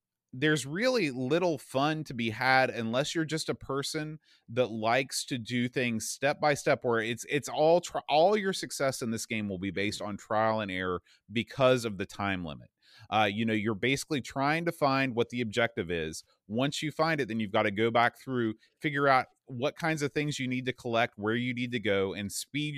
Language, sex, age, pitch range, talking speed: English, male, 30-49, 110-140 Hz, 215 wpm